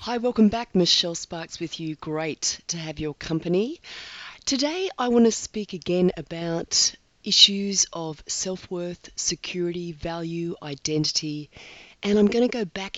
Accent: Australian